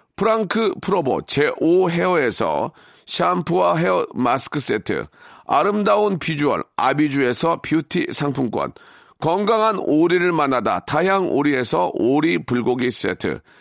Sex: male